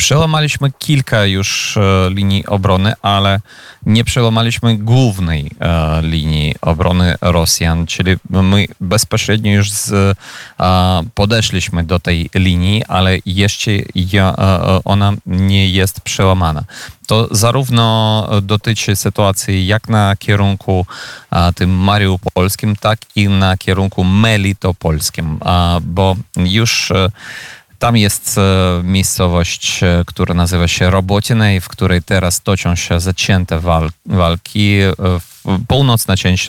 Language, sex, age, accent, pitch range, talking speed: Polish, male, 30-49, native, 90-110 Hz, 95 wpm